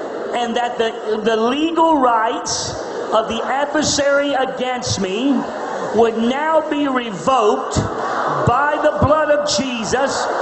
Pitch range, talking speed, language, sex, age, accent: 265-330 Hz, 115 wpm, English, male, 40-59, American